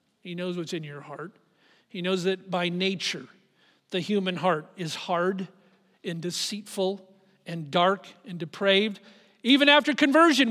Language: English